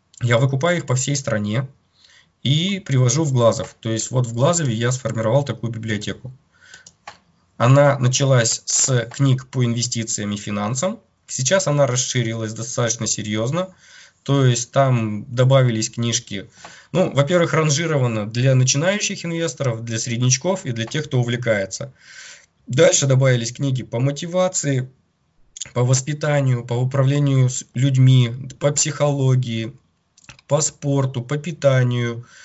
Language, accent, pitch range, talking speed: Russian, native, 120-140 Hz, 120 wpm